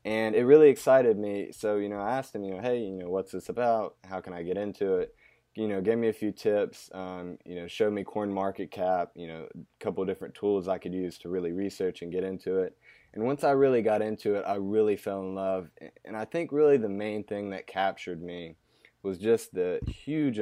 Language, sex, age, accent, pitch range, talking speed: English, male, 20-39, American, 90-105 Hz, 245 wpm